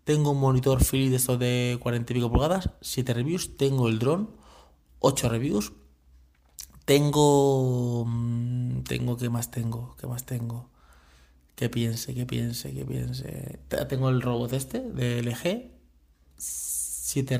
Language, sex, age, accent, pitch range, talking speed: Spanish, male, 20-39, Spanish, 115-135 Hz, 135 wpm